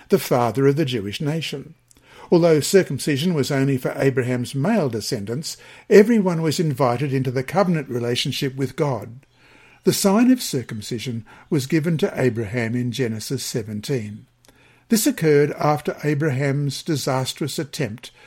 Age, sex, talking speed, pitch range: 60-79, male, 130 wpm, 130-170 Hz